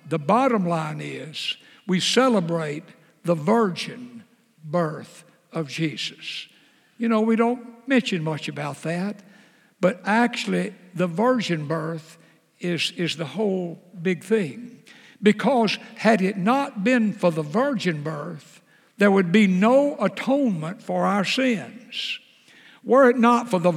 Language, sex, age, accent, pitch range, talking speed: English, male, 60-79, American, 175-230 Hz, 130 wpm